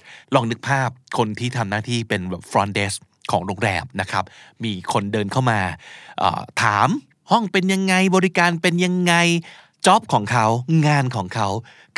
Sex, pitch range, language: male, 120-165 Hz, Thai